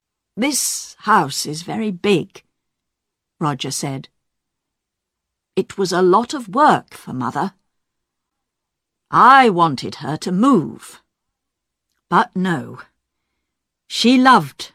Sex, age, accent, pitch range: female, 50-69, British, 150-250 Hz